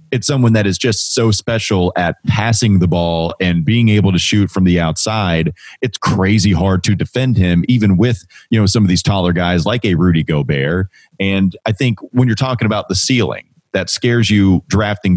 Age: 30-49